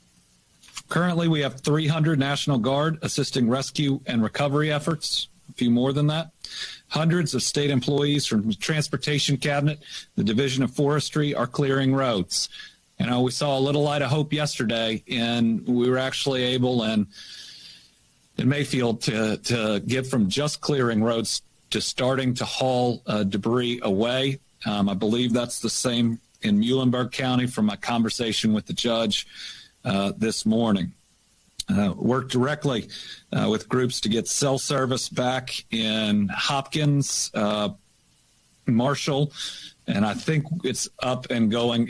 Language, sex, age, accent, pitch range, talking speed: English, male, 40-59, American, 115-145 Hz, 150 wpm